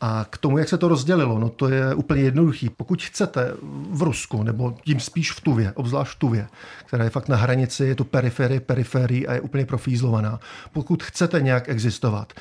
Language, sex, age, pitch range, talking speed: Czech, male, 50-69, 120-140 Hz, 200 wpm